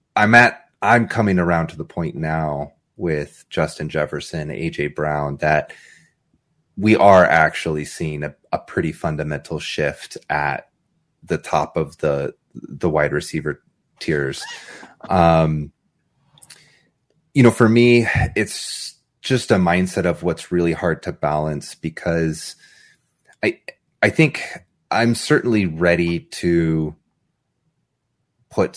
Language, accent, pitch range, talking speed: English, American, 75-90 Hz, 120 wpm